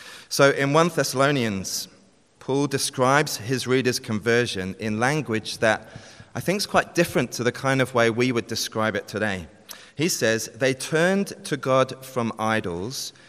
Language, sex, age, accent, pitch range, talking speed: English, male, 30-49, British, 110-135 Hz, 160 wpm